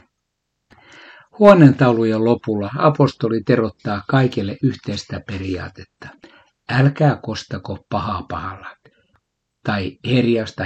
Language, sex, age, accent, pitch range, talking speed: Finnish, male, 60-79, native, 95-125 Hz, 75 wpm